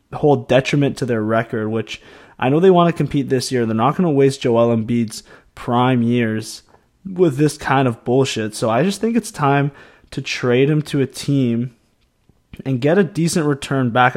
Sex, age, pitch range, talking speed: male, 20-39, 120-145 Hz, 190 wpm